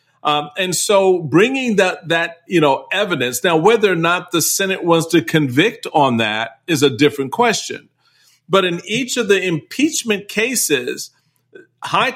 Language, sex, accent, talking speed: English, male, American, 160 wpm